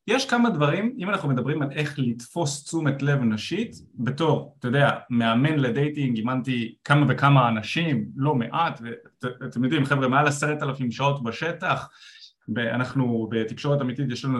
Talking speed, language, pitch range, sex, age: 155 wpm, Hebrew, 120-160 Hz, male, 20-39